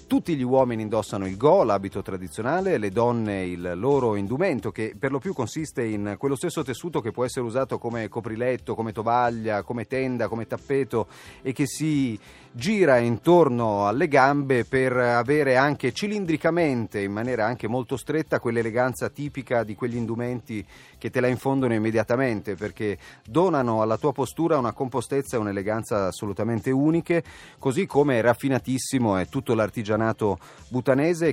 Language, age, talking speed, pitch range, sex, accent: Italian, 30-49, 150 wpm, 105-135 Hz, male, native